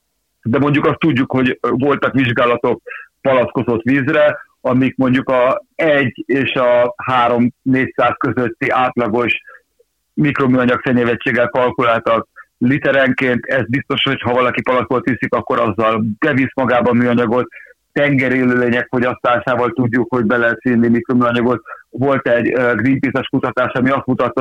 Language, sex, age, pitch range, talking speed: Hungarian, male, 60-79, 120-135 Hz, 120 wpm